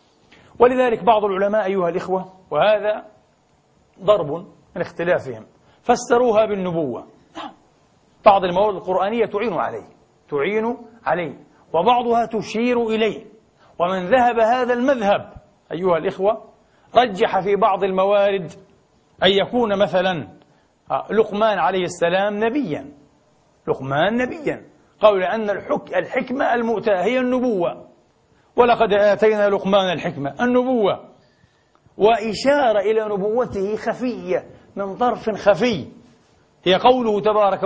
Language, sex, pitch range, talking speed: Arabic, male, 180-225 Hz, 95 wpm